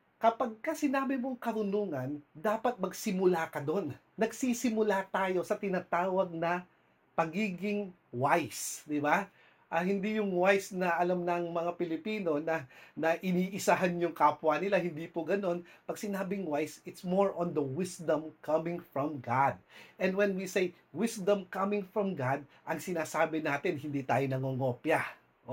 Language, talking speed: English, 145 wpm